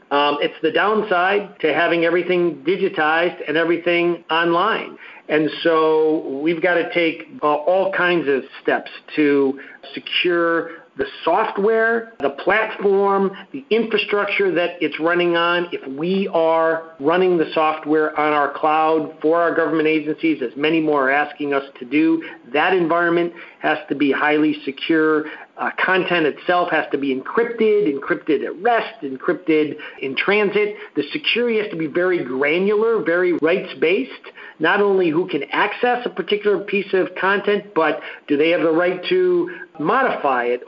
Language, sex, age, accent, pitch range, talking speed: English, male, 50-69, American, 155-205 Hz, 150 wpm